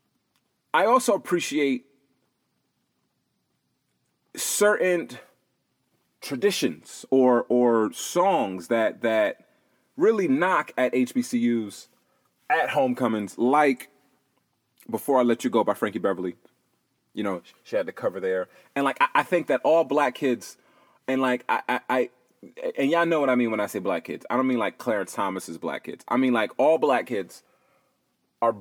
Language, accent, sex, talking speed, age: English, American, male, 150 wpm, 30-49